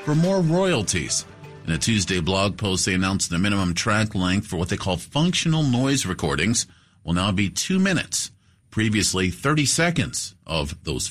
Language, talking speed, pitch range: English, 165 wpm, 95-125 Hz